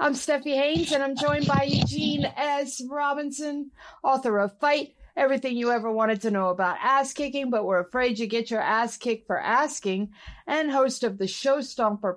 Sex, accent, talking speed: female, American, 185 wpm